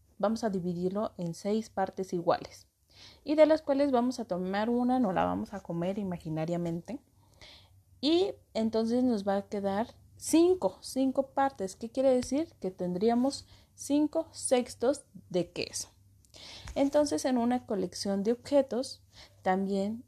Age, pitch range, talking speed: 30-49, 180-260 Hz, 135 wpm